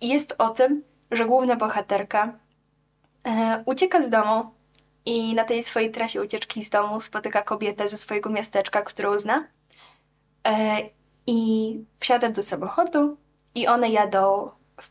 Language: Polish